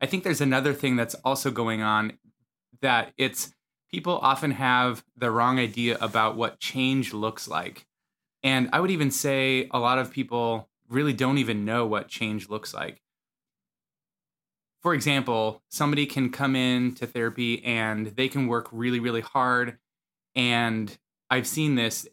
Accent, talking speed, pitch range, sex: American, 155 wpm, 115-130 Hz, male